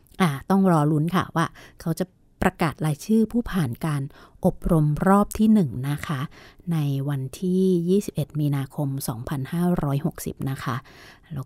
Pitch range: 145-180 Hz